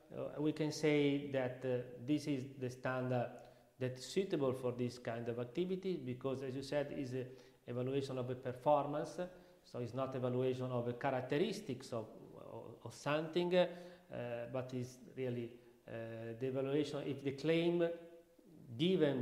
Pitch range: 125-155 Hz